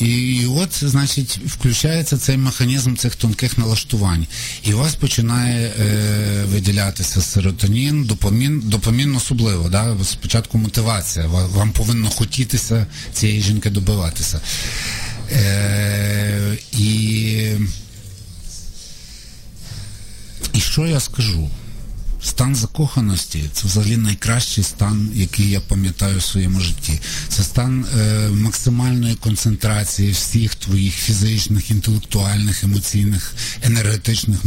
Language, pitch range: Ukrainian, 100-115 Hz